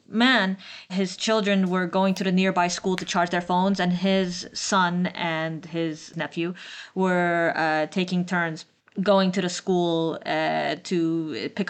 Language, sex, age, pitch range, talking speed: English, female, 20-39, 165-195 Hz, 155 wpm